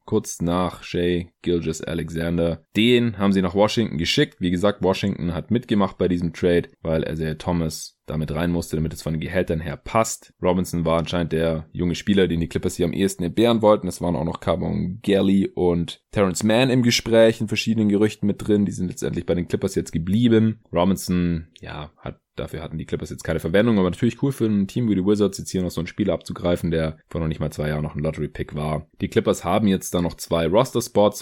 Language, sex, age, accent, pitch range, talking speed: German, male, 20-39, German, 80-105 Hz, 225 wpm